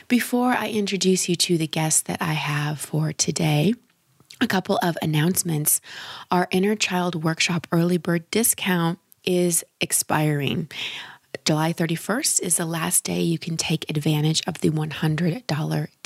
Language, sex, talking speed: English, female, 140 wpm